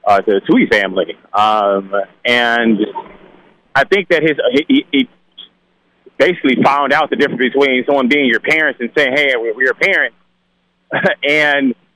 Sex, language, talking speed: male, English, 155 wpm